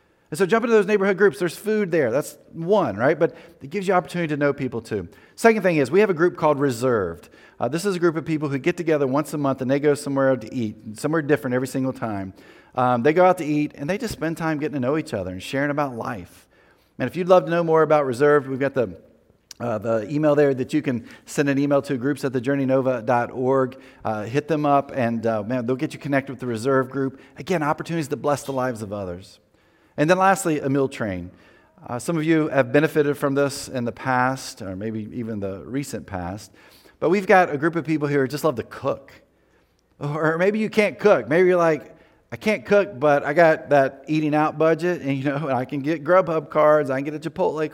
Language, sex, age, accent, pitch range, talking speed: English, male, 40-59, American, 130-165 Hz, 240 wpm